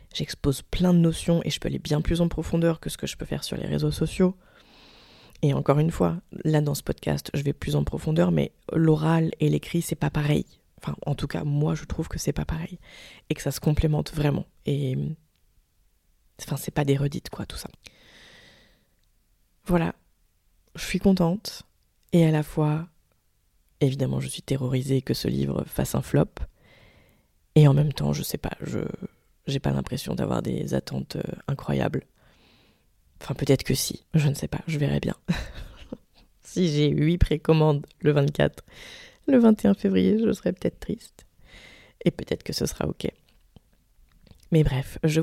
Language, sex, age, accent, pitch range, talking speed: French, female, 20-39, French, 130-165 Hz, 180 wpm